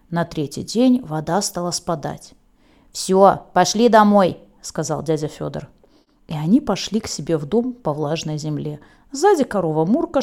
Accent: native